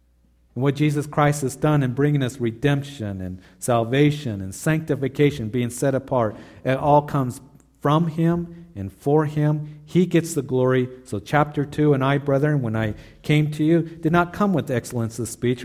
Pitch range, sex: 115-155 Hz, male